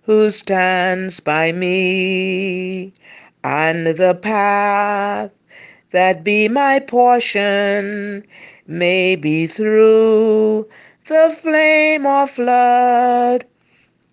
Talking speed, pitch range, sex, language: 75 wpm, 205-320 Hz, female, English